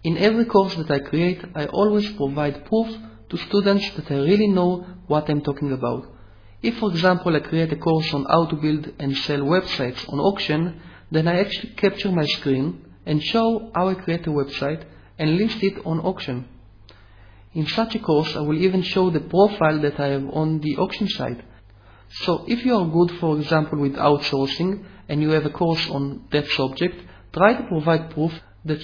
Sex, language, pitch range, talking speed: male, English, 140-185 Hz, 195 wpm